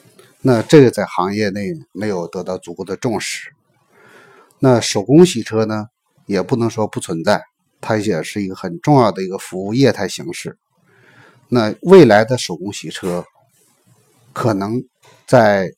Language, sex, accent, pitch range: Chinese, male, native, 100-125 Hz